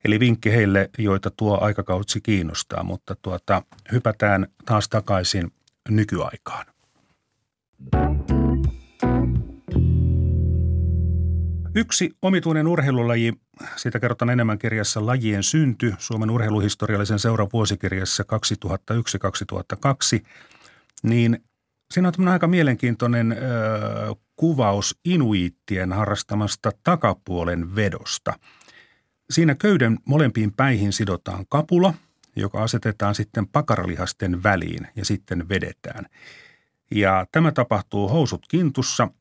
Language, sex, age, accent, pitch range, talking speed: Finnish, male, 40-59, native, 95-120 Hz, 85 wpm